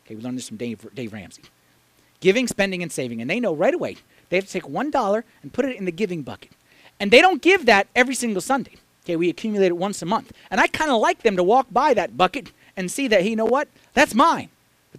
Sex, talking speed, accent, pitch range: male, 255 wpm, American, 170-255 Hz